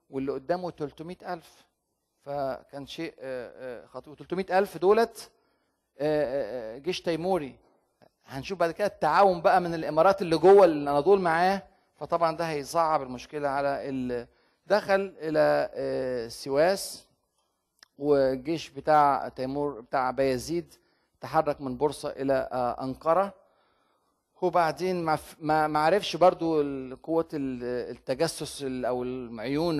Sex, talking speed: male, 105 wpm